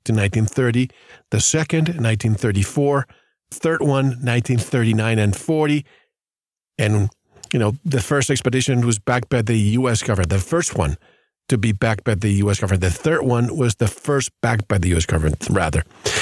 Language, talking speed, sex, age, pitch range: English, 165 wpm, male, 40-59, 110-130 Hz